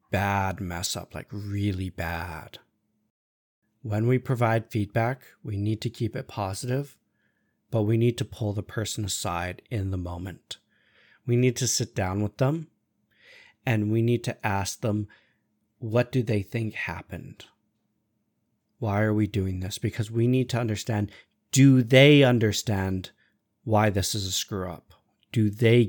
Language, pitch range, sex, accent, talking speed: English, 100-115 Hz, male, American, 155 wpm